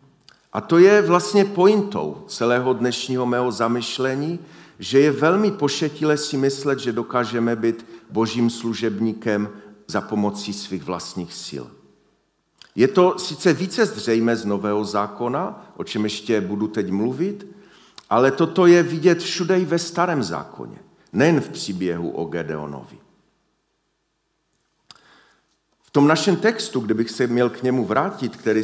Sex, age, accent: male, 40-59, native